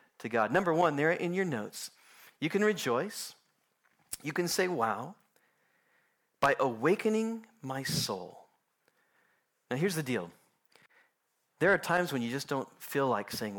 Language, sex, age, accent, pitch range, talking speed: English, male, 40-59, American, 135-225 Hz, 145 wpm